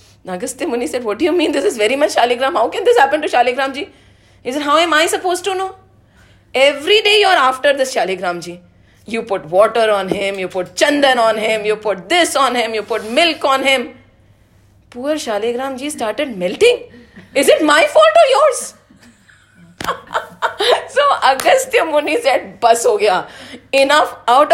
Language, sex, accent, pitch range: English, female, Indian, 190-275 Hz